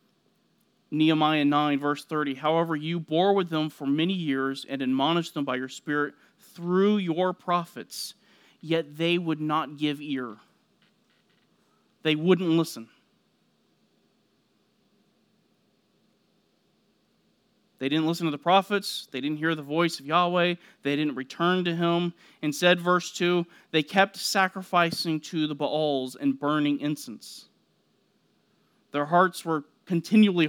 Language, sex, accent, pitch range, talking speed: English, male, American, 145-180 Hz, 125 wpm